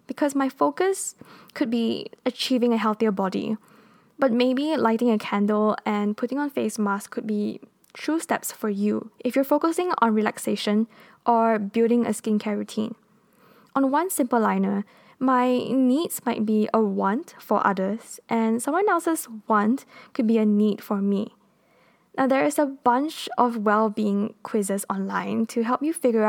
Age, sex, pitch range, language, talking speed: 10-29, female, 210-255 Hz, English, 160 wpm